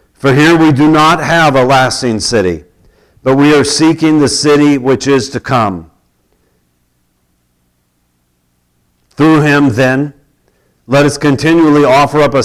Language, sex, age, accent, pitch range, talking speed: English, male, 50-69, American, 105-140 Hz, 135 wpm